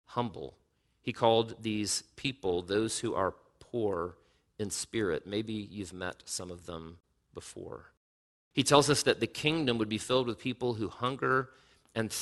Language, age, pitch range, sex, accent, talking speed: English, 40-59, 100-125 Hz, male, American, 155 wpm